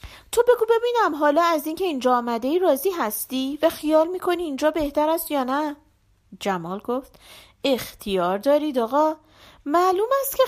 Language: Persian